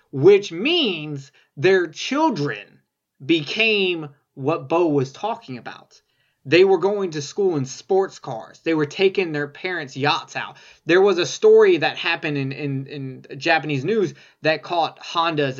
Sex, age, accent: male, 20-39, American